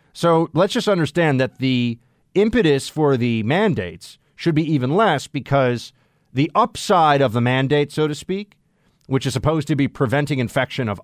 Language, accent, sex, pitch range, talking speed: English, American, male, 105-150 Hz, 170 wpm